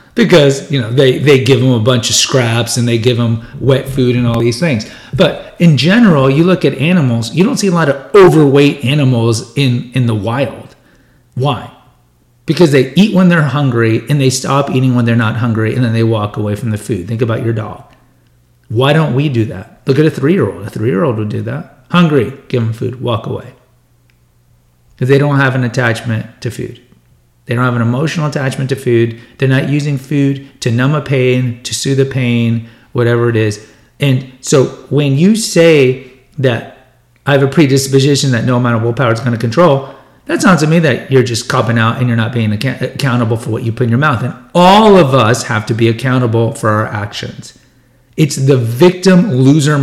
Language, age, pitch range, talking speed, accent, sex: English, 40-59, 115-140 Hz, 205 wpm, American, male